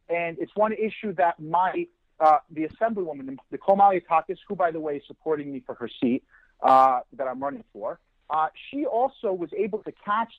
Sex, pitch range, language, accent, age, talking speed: male, 150-200 Hz, English, American, 40-59, 190 wpm